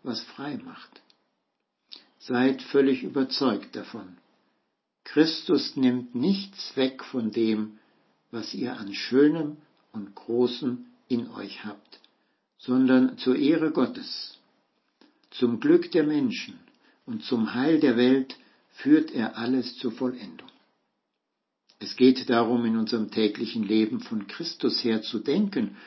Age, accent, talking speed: 60-79, German, 120 wpm